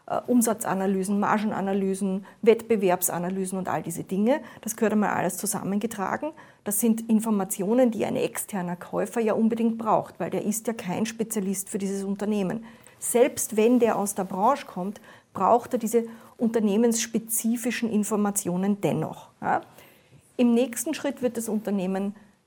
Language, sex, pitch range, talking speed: German, female, 190-230 Hz, 135 wpm